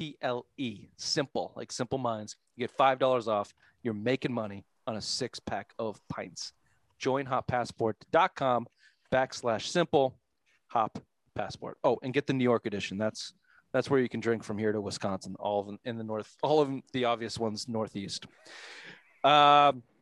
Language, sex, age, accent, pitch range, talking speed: English, male, 30-49, American, 110-145 Hz, 165 wpm